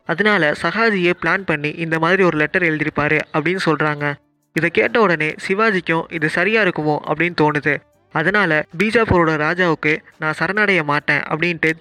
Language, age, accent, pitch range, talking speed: Tamil, 20-39, native, 155-180 Hz, 135 wpm